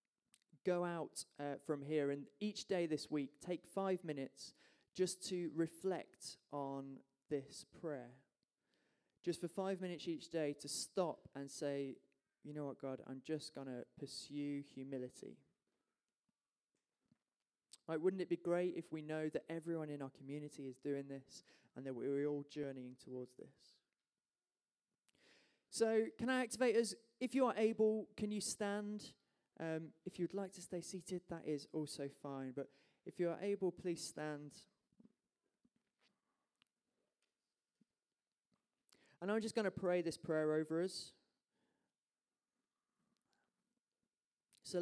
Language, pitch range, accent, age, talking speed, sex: English, 140-180 Hz, British, 20-39, 140 wpm, male